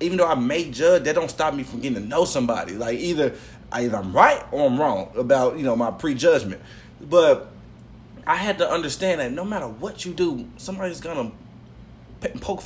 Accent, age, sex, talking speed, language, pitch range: American, 20-39, male, 195 wpm, English, 125-185 Hz